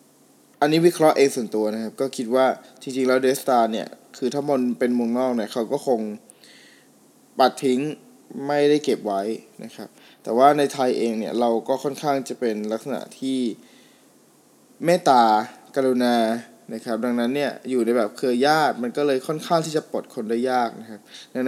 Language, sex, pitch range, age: Thai, male, 115-145 Hz, 20-39